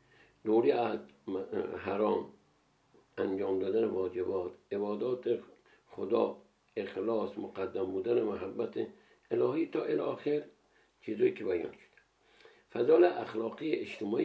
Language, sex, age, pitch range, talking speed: Persian, male, 60-79, 345-405 Hz, 90 wpm